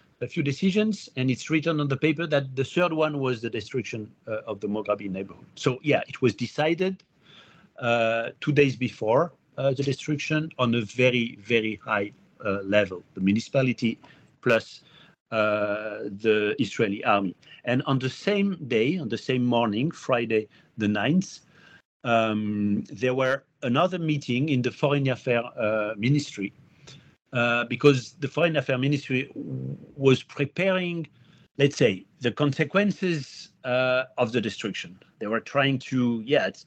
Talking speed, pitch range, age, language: 150 wpm, 115-145 Hz, 50-69, English